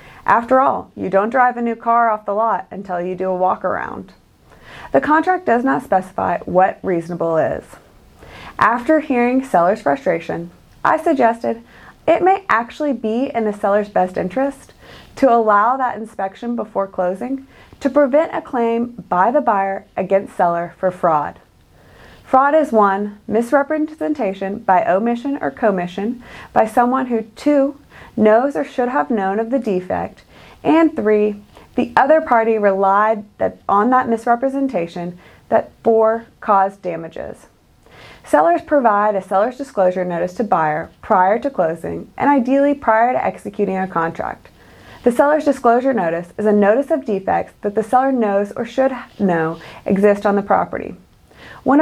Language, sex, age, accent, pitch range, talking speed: English, female, 30-49, American, 195-265 Hz, 150 wpm